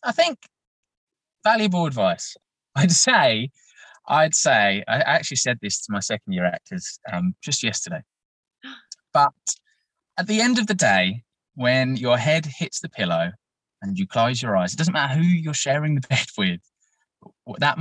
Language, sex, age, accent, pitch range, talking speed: English, male, 20-39, British, 105-150 Hz, 160 wpm